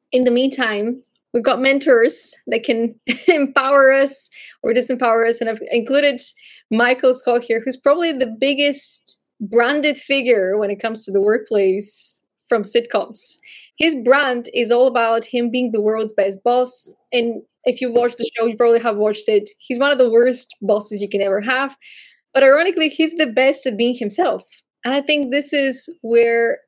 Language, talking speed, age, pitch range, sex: English, 180 wpm, 20-39, 220-270 Hz, female